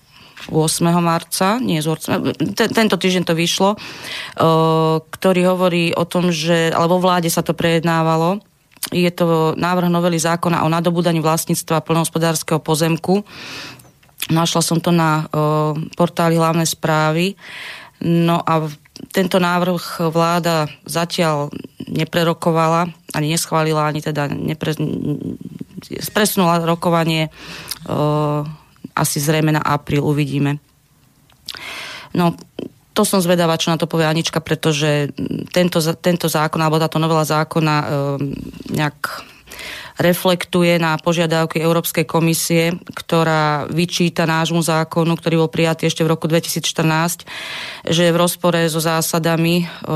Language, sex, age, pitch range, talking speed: Slovak, female, 30-49, 155-170 Hz, 120 wpm